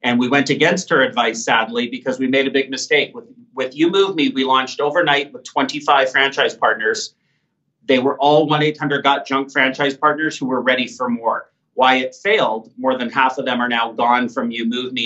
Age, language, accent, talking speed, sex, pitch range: 40-59, English, American, 210 wpm, male, 135-170 Hz